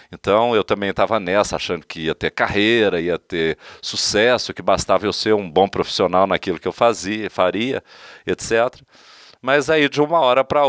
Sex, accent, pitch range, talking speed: male, Brazilian, 110-140 Hz, 180 wpm